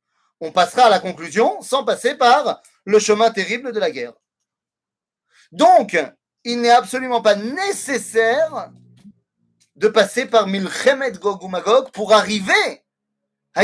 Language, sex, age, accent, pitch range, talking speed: French, male, 30-49, French, 170-245 Hz, 125 wpm